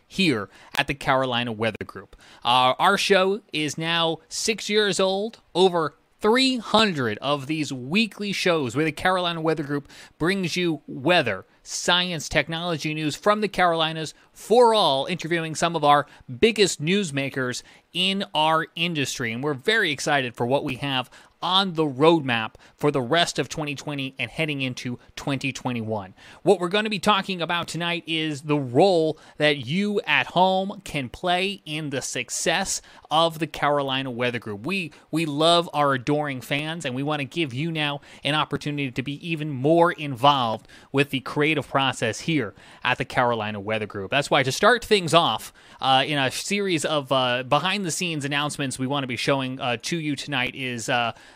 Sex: male